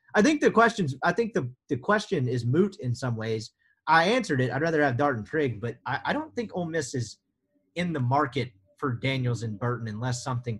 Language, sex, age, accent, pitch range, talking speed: English, male, 30-49, American, 115-180 Hz, 205 wpm